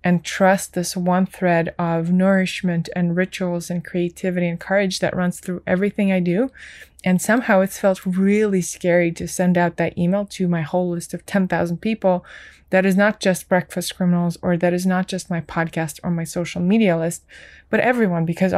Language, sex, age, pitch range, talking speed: English, female, 20-39, 170-195 Hz, 185 wpm